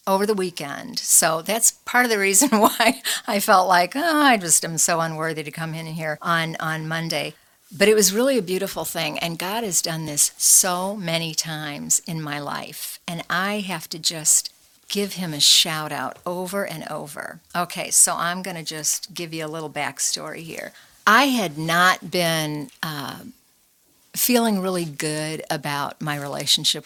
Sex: female